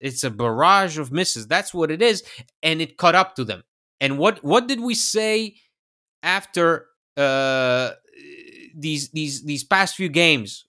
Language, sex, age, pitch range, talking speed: English, male, 30-49, 135-195 Hz, 165 wpm